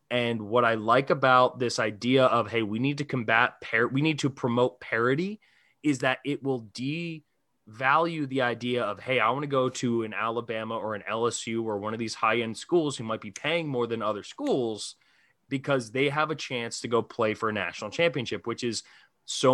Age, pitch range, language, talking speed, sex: 20-39, 115-150 Hz, English, 210 wpm, male